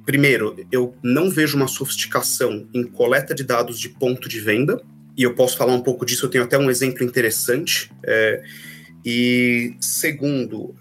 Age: 30-49